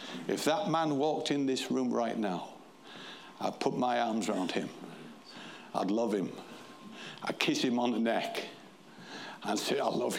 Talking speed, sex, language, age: 165 wpm, male, English, 60-79